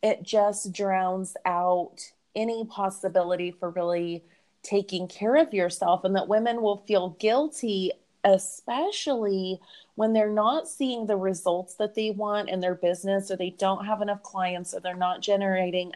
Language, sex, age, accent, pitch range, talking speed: English, female, 30-49, American, 180-205 Hz, 155 wpm